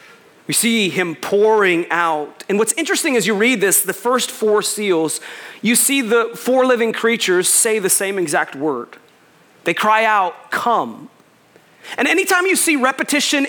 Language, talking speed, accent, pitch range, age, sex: English, 160 wpm, American, 225-315 Hz, 30-49, male